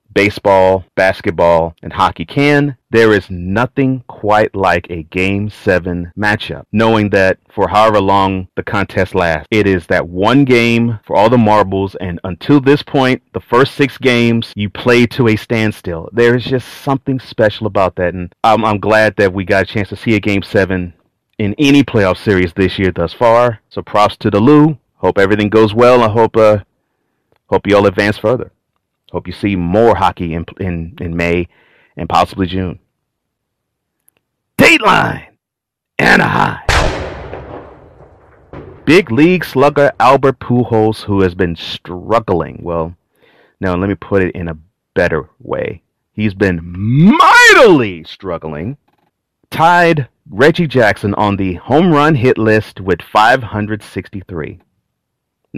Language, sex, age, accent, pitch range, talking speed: English, male, 30-49, American, 95-120 Hz, 150 wpm